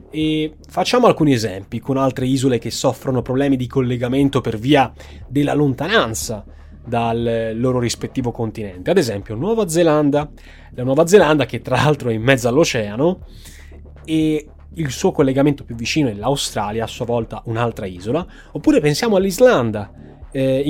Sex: male